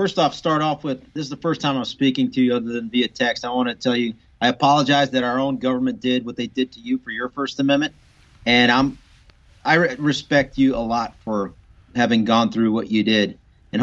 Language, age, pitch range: English, 40-59, 130-170 Hz